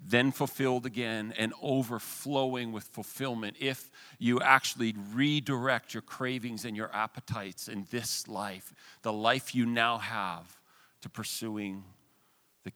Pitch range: 100-120 Hz